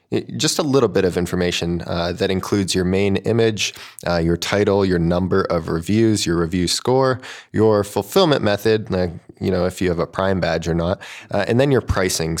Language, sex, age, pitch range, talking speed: English, male, 20-39, 85-100 Hz, 200 wpm